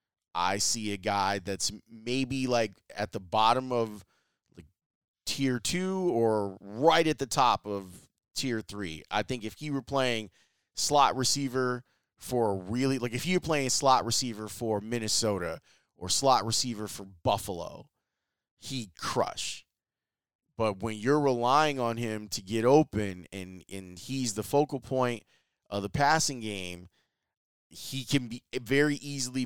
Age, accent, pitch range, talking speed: 30-49, American, 105-135 Hz, 145 wpm